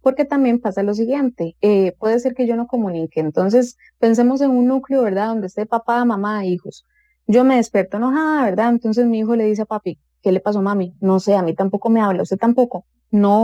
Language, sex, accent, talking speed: English, female, Colombian, 220 wpm